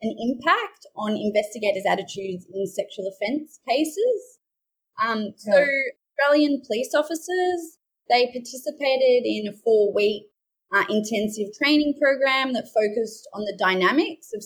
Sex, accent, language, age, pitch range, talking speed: female, Australian, English, 20-39, 205-285 Hz, 115 wpm